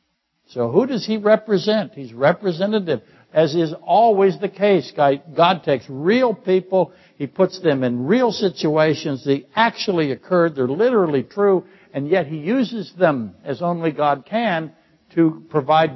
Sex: male